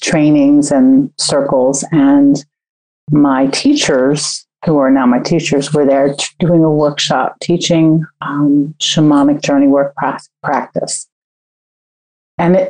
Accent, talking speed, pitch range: American, 110 wpm, 150-180 Hz